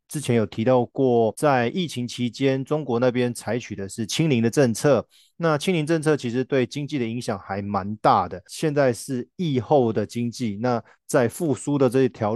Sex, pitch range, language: male, 115-140 Hz, Chinese